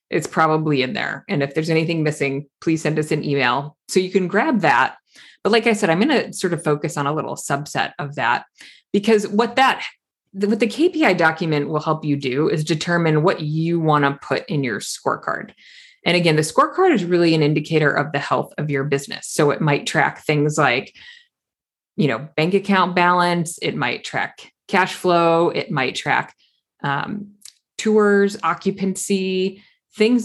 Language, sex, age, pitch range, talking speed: English, female, 30-49, 150-205 Hz, 185 wpm